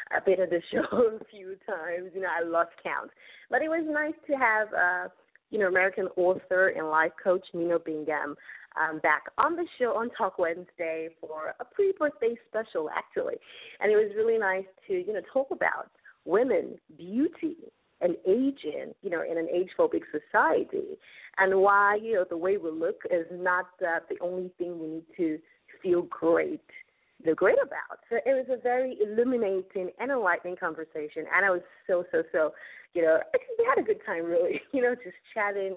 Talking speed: 190 wpm